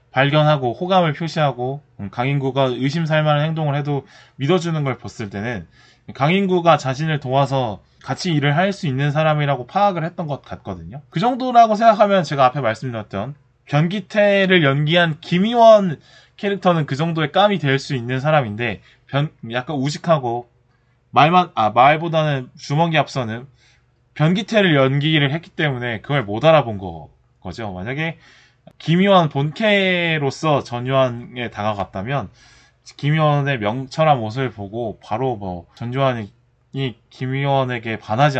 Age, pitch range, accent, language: 20-39, 125-170 Hz, native, Korean